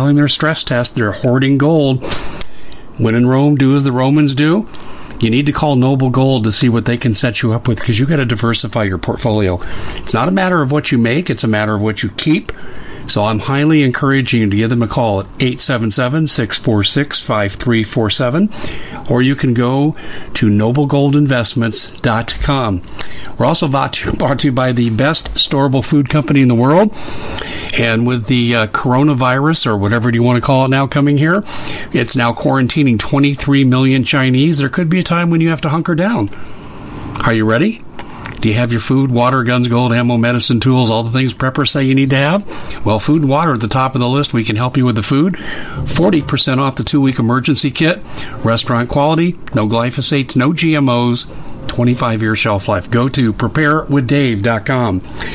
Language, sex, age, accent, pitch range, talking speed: English, male, 50-69, American, 115-145 Hz, 190 wpm